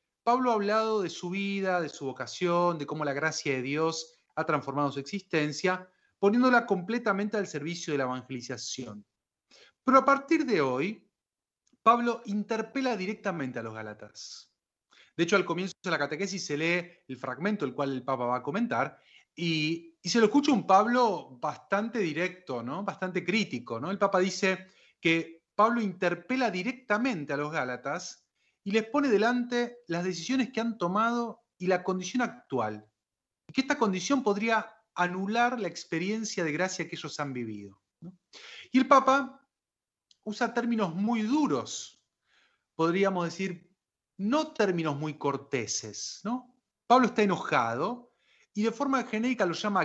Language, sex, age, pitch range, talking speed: Spanish, male, 30-49, 150-220 Hz, 155 wpm